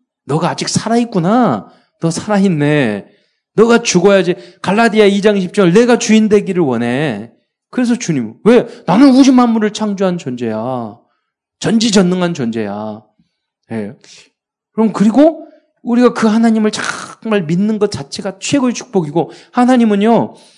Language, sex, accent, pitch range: Korean, male, native, 145-220 Hz